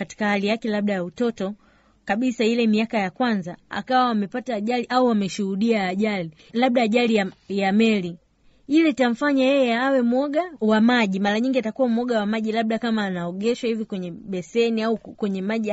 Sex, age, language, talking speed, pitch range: female, 30-49, Swahili, 170 wpm, 205-260 Hz